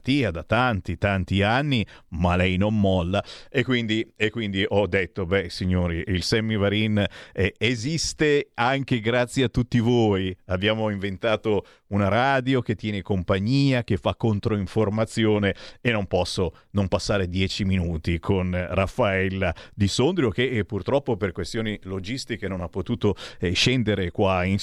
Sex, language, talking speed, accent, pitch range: male, Italian, 140 wpm, native, 95-130 Hz